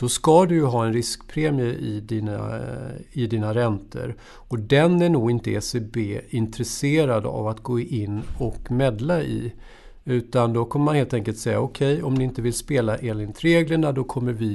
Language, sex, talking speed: Swedish, male, 180 wpm